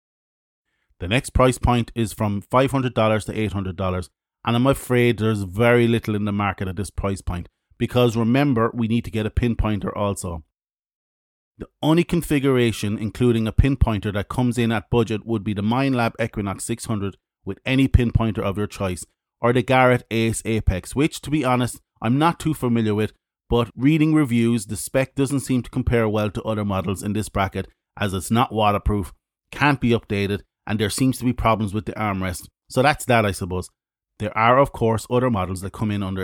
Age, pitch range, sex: 30-49, 105-125 Hz, male